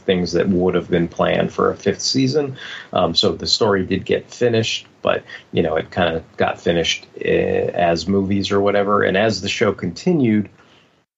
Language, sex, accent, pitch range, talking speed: English, male, American, 90-110 Hz, 190 wpm